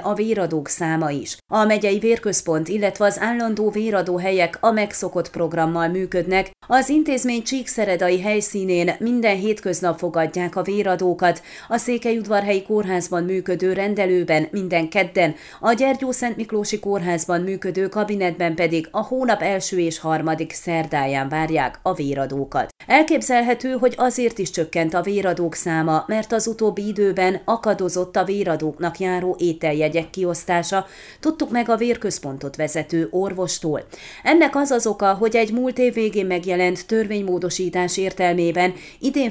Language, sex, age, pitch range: Hungarian, female, 30-49, 170-220 Hz